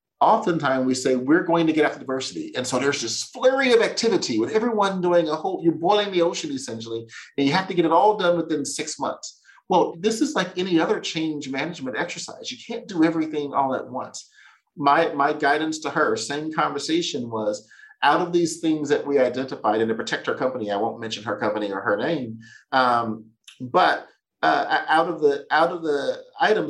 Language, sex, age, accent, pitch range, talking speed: English, male, 40-59, American, 115-165 Hz, 205 wpm